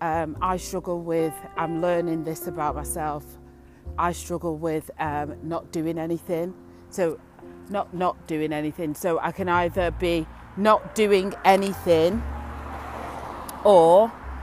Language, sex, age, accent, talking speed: English, female, 30-49, British, 125 wpm